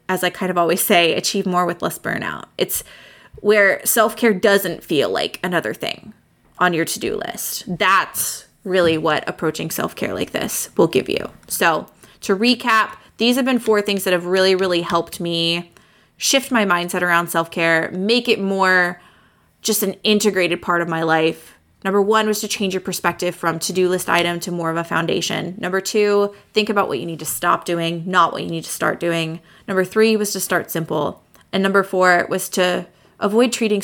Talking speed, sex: 190 wpm, female